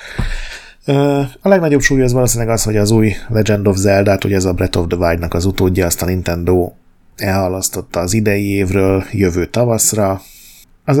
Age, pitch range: 30-49, 90-115 Hz